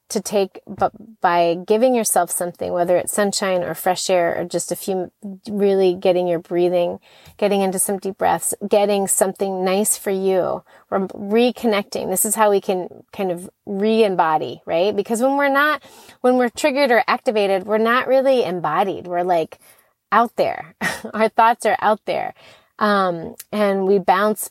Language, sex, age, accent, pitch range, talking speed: English, female, 30-49, American, 185-230 Hz, 160 wpm